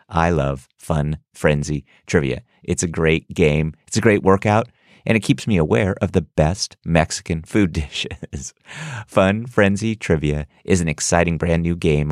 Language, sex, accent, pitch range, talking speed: English, male, American, 80-110 Hz, 165 wpm